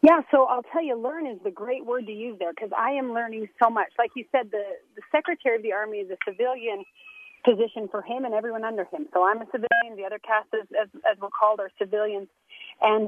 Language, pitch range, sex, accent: English, 205-255 Hz, female, American